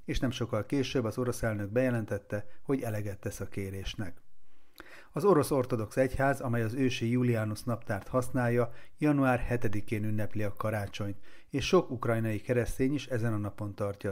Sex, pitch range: male, 105-130 Hz